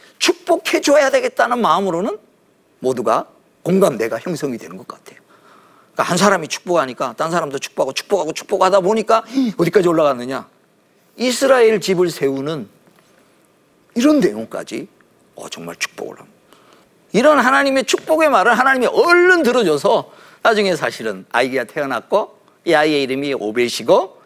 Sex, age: male, 50-69